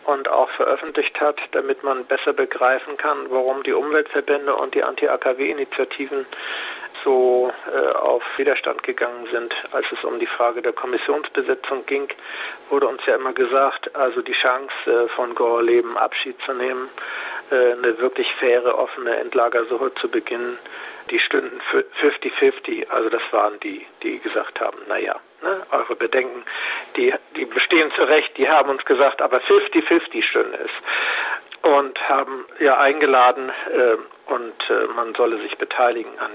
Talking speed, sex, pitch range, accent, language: 150 wpm, male, 340-440 Hz, German, German